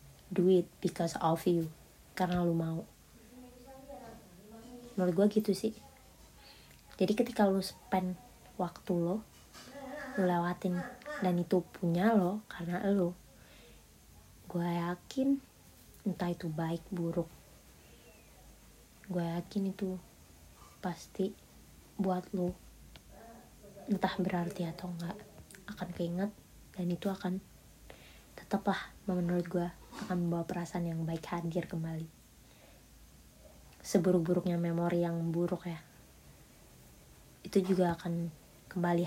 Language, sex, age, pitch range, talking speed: Indonesian, female, 20-39, 170-195 Hz, 100 wpm